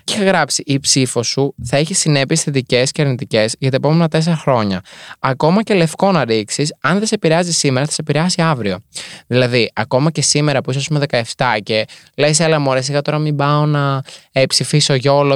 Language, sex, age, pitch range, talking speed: Greek, male, 20-39, 125-165 Hz, 200 wpm